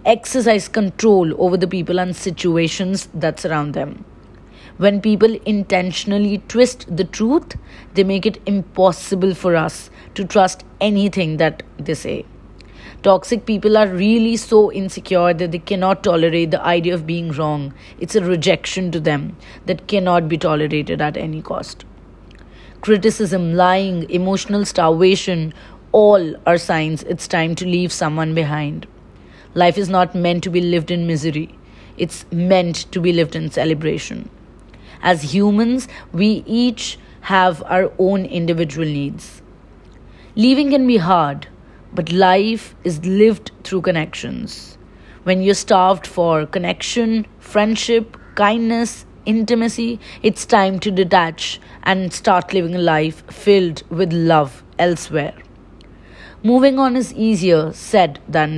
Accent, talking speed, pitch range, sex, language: Indian, 135 wpm, 165-205 Hz, female, English